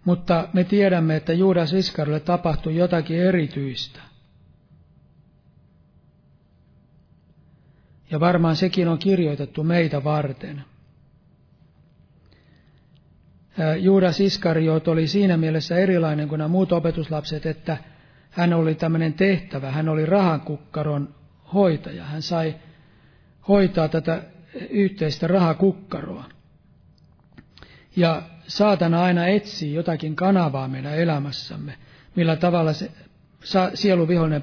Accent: native